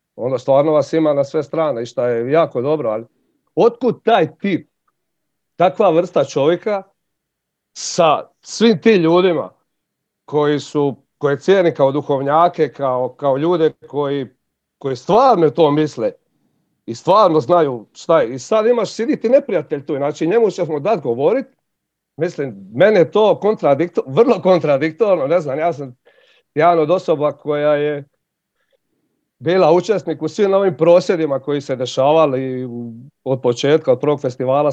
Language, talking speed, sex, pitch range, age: Croatian, 150 wpm, male, 140-190 Hz, 40-59